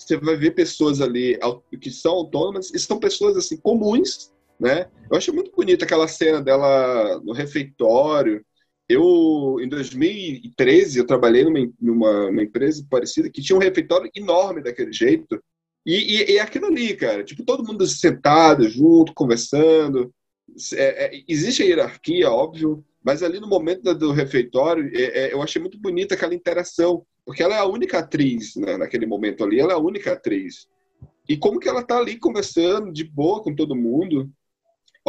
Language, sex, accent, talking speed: Portuguese, male, Brazilian, 170 wpm